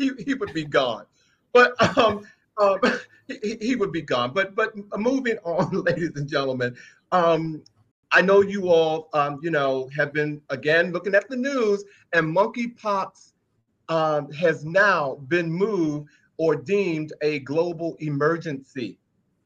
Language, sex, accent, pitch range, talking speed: English, male, American, 155-190 Hz, 145 wpm